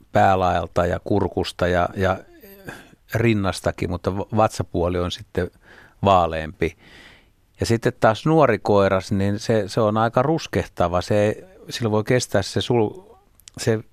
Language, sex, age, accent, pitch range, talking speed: Finnish, male, 60-79, native, 90-115 Hz, 120 wpm